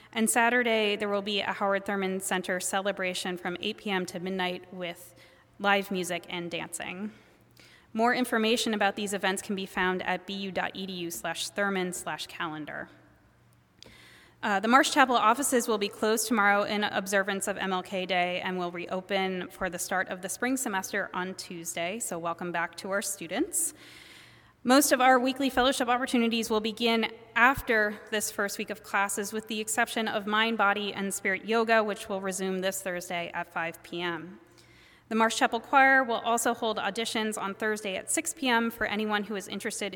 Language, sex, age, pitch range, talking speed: English, female, 20-39, 185-225 Hz, 170 wpm